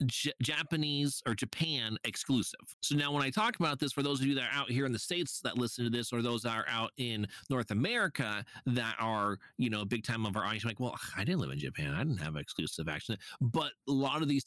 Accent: American